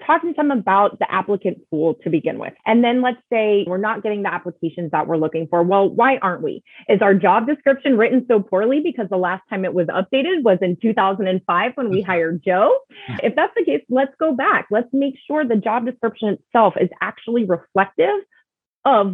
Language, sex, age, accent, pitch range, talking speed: English, female, 30-49, American, 180-250 Hz, 205 wpm